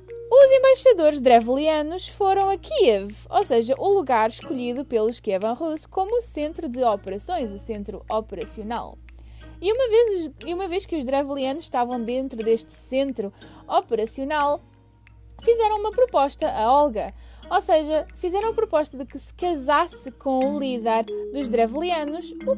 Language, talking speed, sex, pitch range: English, 145 wpm, female, 240-350 Hz